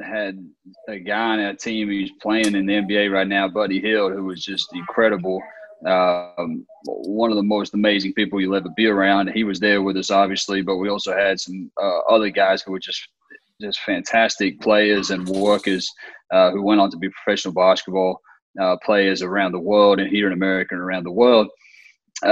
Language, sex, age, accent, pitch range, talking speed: English, male, 30-49, American, 95-110 Hz, 195 wpm